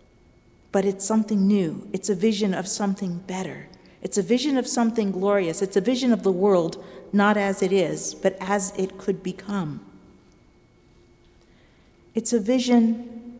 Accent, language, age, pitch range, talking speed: American, English, 50-69, 175-210 Hz, 150 wpm